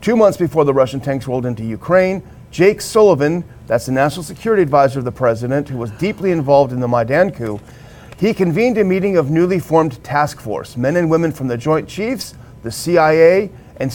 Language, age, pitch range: English, 40-59, 130-170 Hz